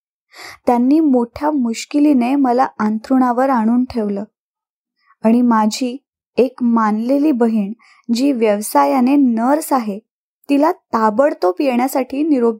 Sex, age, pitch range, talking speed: female, 20-39, 235-295 Hz, 95 wpm